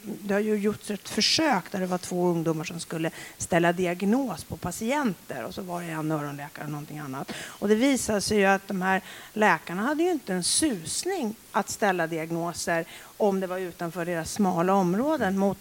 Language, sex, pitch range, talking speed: Swedish, female, 180-230 Hz, 195 wpm